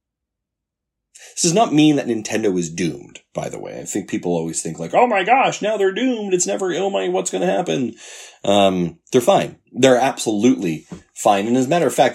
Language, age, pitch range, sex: English, 30-49, 90-130 Hz, male